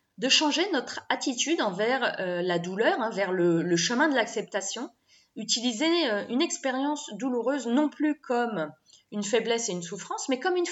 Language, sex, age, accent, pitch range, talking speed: French, female, 20-39, French, 210-290 Hz, 150 wpm